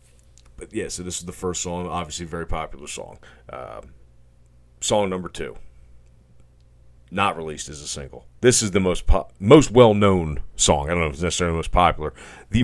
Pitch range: 75-90 Hz